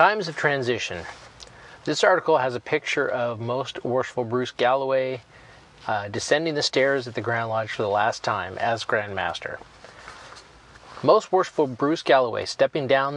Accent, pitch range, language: American, 120-160 Hz, English